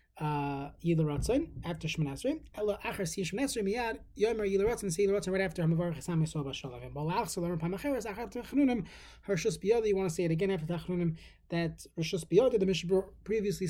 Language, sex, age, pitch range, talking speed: English, male, 30-49, 160-205 Hz, 55 wpm